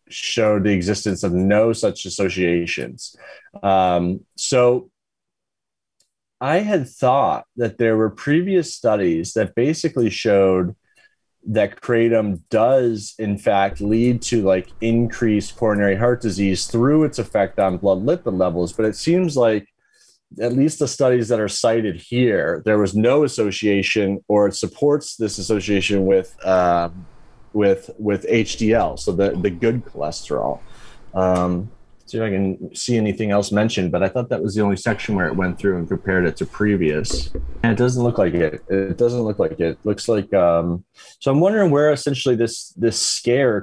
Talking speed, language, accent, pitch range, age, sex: 165 wpm, English, American, 95-120 Hz, 30-49, male